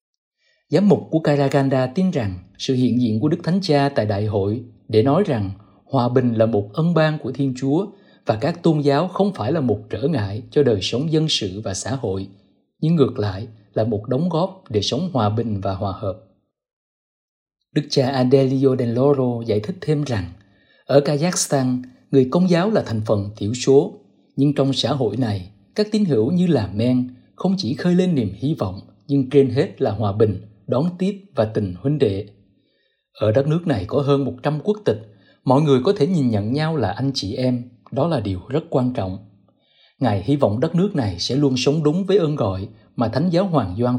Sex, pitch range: male, 110-145 Hz